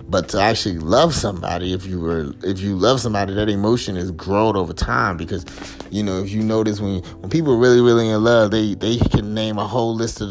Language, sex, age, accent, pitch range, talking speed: English, male, 30-49, American, 100-120 Hz, 240 wpm